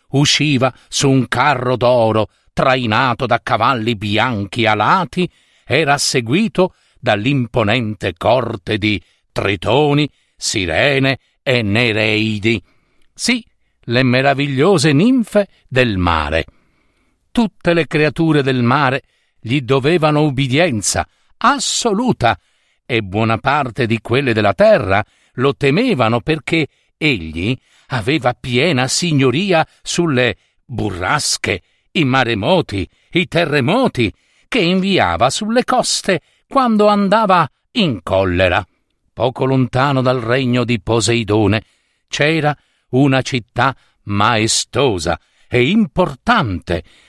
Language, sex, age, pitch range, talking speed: Italian, male, 50-69, 115-155 Hz, 95 wpm